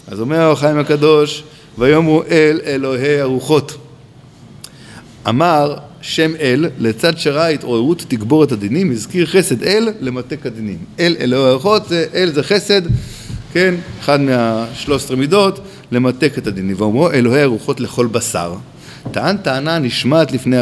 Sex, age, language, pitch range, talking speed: male, 50-69, Hebrew, 130-180 Hz, 130 wpm